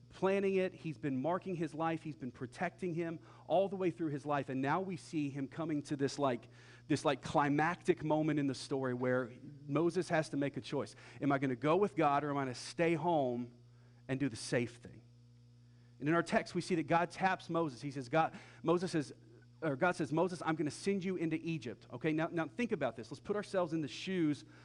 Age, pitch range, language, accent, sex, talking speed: 40-59, 125-175 Hz, English, American, male, 235 wpm